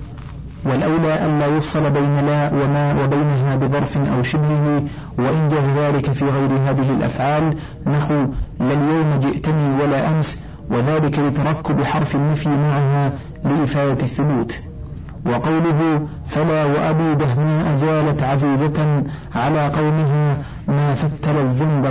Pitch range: 140-155 Hz